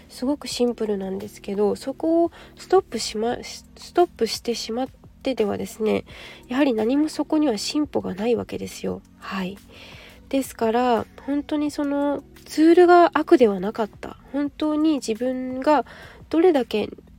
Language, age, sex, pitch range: Japanese, 20-39, female, 210-280 Hz